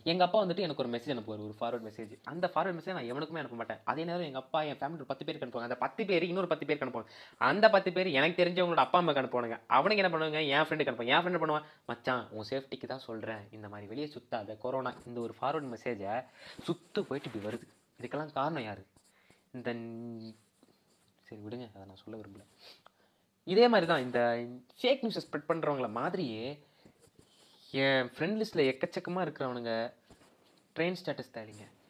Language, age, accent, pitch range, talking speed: Tamil, 20-39, native, 120-185 Hz, 180 wpm